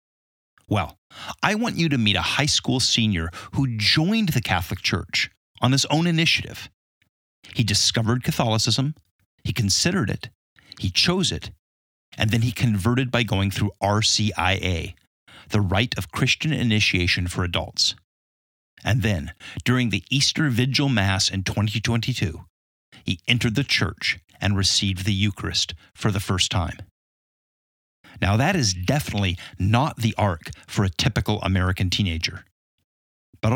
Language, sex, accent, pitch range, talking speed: English, male, American, 95-125 Hz, 140 wpm